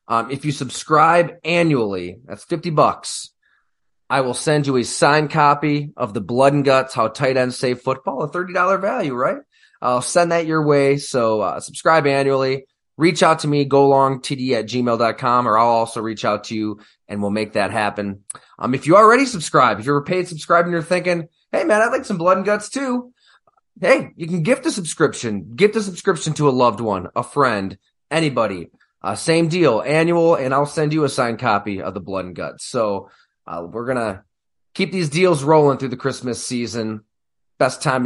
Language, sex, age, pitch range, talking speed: English, male, 20-39, 120-175 Hz, 200 wpm